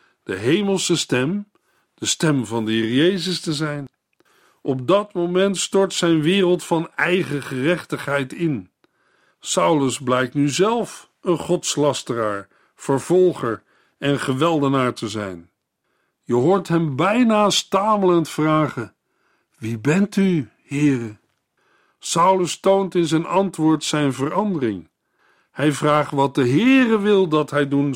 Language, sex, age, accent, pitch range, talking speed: Dutch, male, 60-79, Dutch, 125-175 Hz, 125 wpm